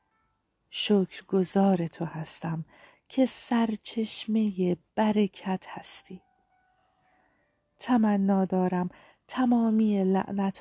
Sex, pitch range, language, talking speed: female, 175-215 Hz, Persian, 70 wpm